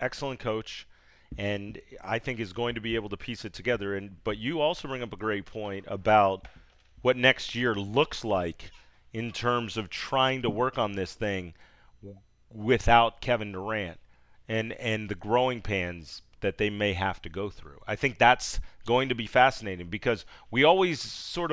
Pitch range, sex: 105-145 Hz, male